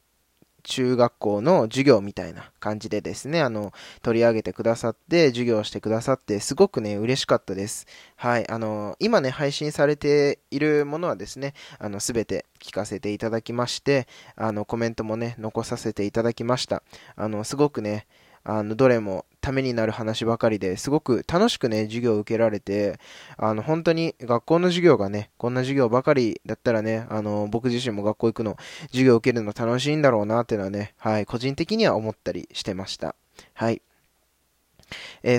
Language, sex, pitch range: Japanese, male, 105-145 Hz